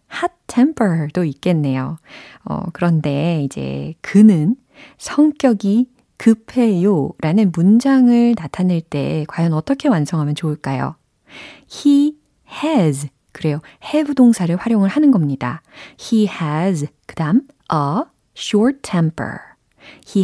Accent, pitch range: native, 155-240 Hz